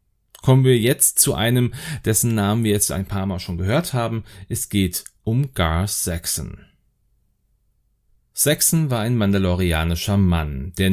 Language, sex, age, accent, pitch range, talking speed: German, male, 30-49, German, 95-125 Hz, 145 wpm